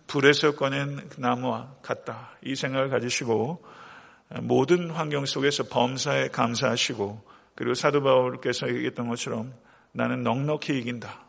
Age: 40-59